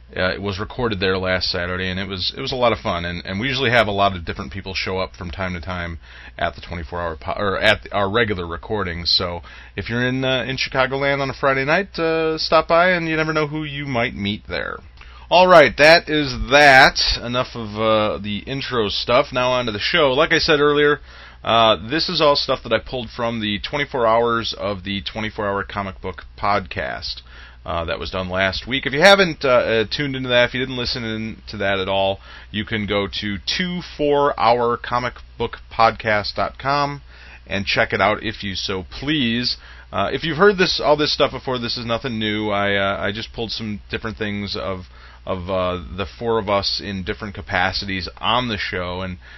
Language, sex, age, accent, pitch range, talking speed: English, male, 30-49, American, 95-125 Hz, 220 wpm